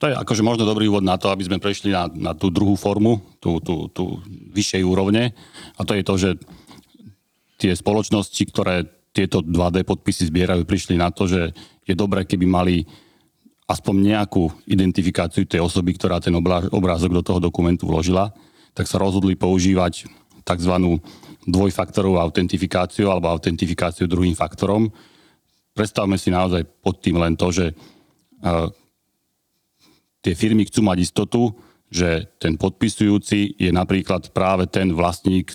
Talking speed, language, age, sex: 145 wpm, Slovak, 40-59, male